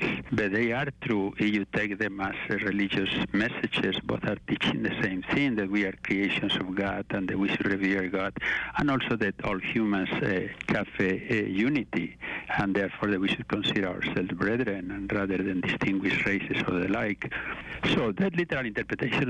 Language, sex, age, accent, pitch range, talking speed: English, male, 60-79, Spanish, 100-110 Hz, 185 wpm